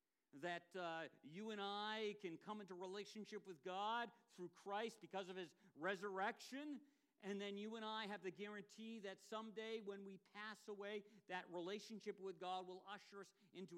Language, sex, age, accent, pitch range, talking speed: English, male, 50-69, American, 160-210 Hz, 170 wpm